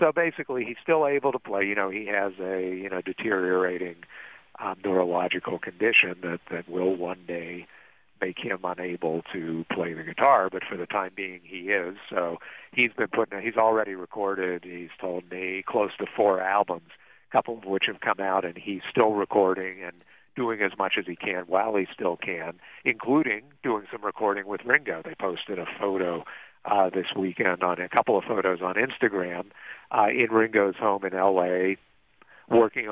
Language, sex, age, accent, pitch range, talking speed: English, male, 50-69, American, 90-100 Hz, 180 wpm